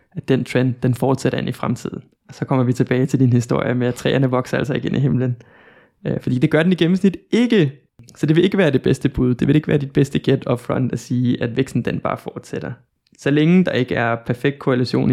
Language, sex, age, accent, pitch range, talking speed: Danish, male, 20-39, native, 125-145 Hz, 245 wpm